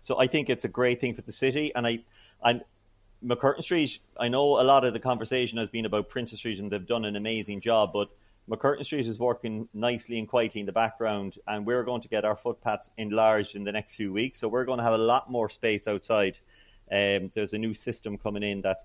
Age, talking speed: 30-49, 240 wpm